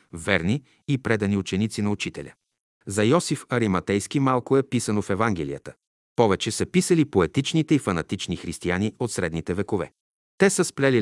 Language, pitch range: Bulgarian, 95-130 Hz